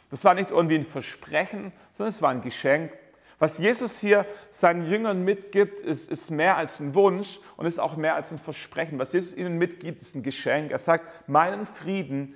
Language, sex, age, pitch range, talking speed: German, male, 40-59, 145-180 Hz, 200 wpm